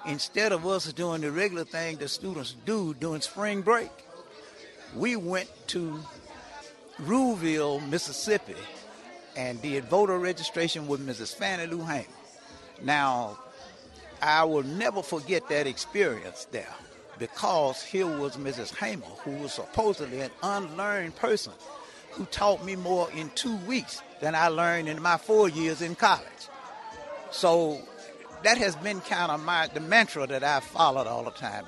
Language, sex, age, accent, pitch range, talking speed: English, male, 60-79, American, 150-195 Hz, 145 wpm